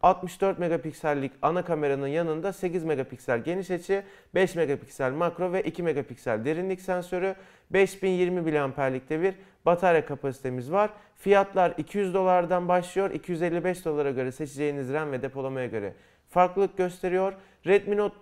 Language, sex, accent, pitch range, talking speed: Turkish, male, native, 150-185 Hz, 130 wpm